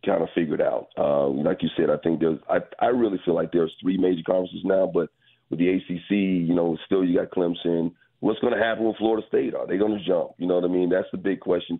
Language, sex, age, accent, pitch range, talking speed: English, male, 40-59, American, 85-95 Hz, 270 wpm